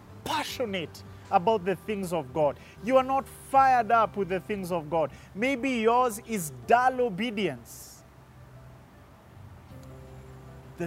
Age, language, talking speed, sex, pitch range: 30-49, English, 120 wpm, male, 150-220 Hz